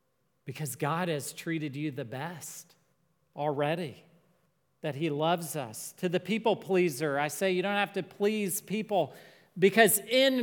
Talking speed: 150 wpm